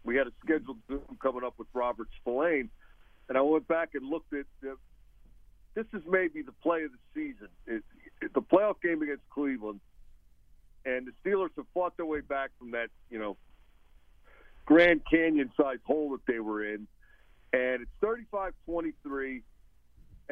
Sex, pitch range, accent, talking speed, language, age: male, 125-165 Hz, American, 155 wpm, English, 50-69